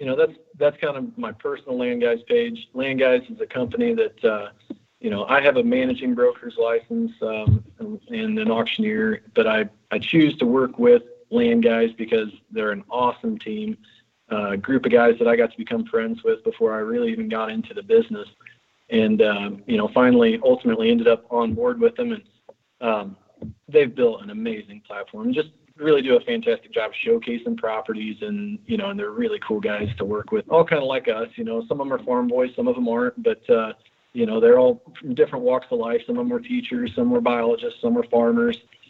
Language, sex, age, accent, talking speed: English, male, 40-59, American, 220 wpm